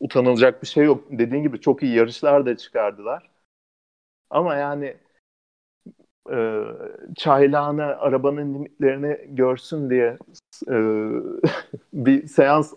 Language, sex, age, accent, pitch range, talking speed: Turkish, male, 40-59, native, 110-140 Hz, 105 wpm